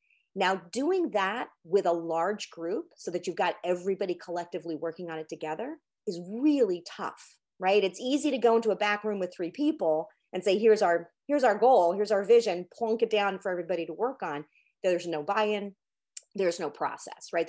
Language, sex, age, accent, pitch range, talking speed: English, female, 30-49, American, 165-220 Hz, 195 wpm